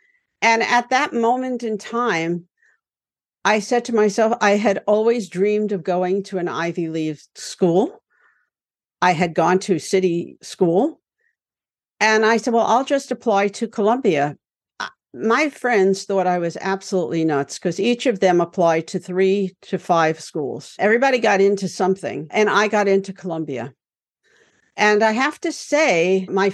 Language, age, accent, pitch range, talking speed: English, 60-79, American, 170-220 Hz, 155 wpm